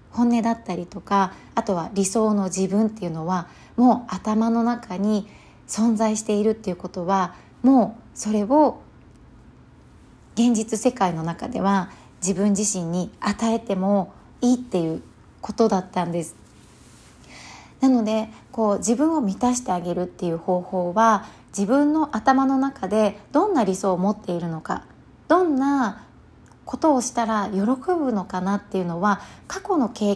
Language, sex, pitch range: Japanese, female, 190-245 Hz